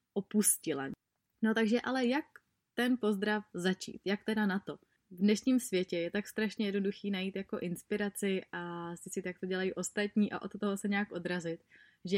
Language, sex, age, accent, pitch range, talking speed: Czech, female, 20-39, native, 185-220 Hz, 175 wpm